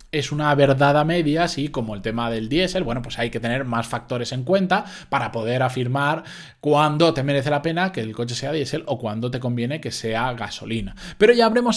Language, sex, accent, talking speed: Spanish, male, Spanish, 220 wpm